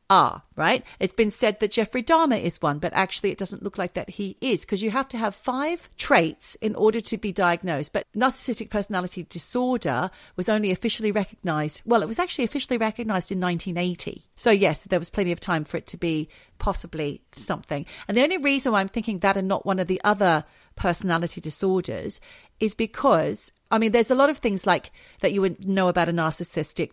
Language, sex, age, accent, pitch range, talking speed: English, female, 40-59, British, 160-205 Hz, 205 wpm